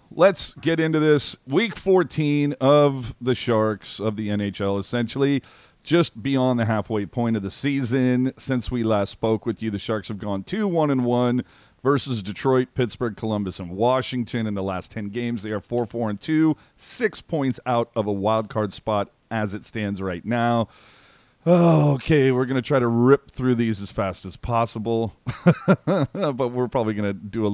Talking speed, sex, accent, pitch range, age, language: 185 wpm, male, American, 105-130 Hz, 40-59, English